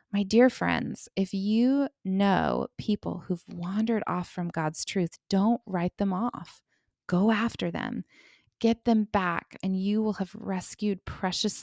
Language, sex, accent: English, female, American